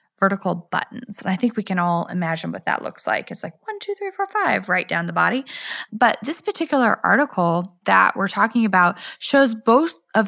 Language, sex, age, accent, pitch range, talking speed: English, female, 20-39, American, 190-260 Hz, 205 wpm